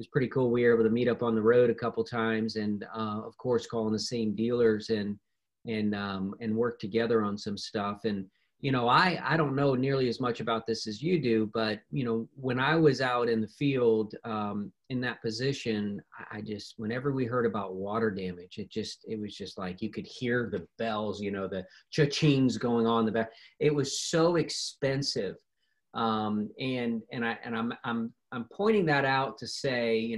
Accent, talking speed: American, 210 wpm